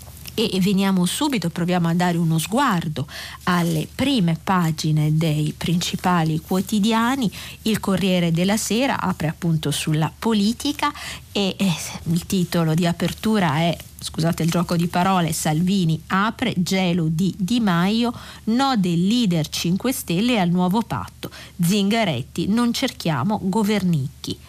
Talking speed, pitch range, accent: 125 wpm, 160-205 Hz, native